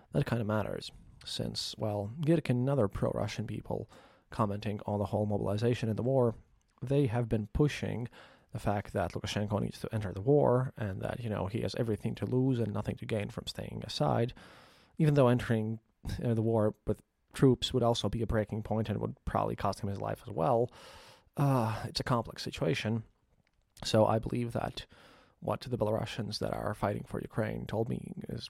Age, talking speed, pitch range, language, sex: 30-49, 190 wpm, 105-120 Hz, English, male